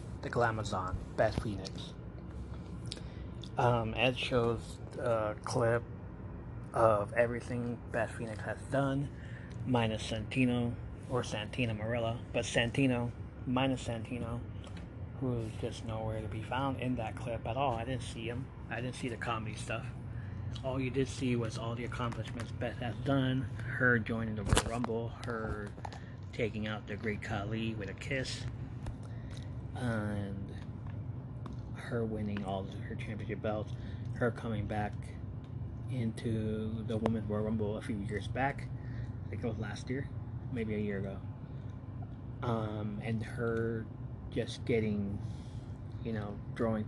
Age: 30-49